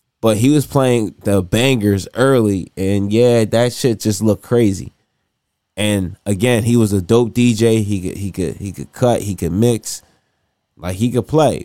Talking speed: 180 wpm